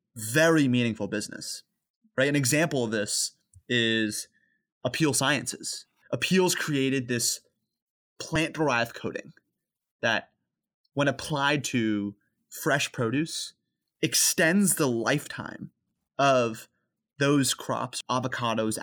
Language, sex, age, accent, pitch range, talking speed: English, male, 20-39, American, 125-160 Hz, 90 wpm